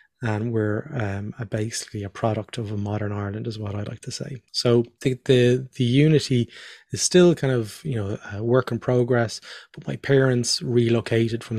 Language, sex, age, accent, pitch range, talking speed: English, male, 20-39, Irish, 110-125 Hz, 190 wpm